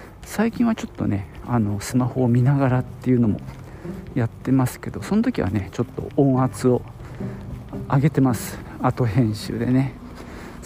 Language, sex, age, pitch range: Japanese, male, 50-69, 105-150 Hz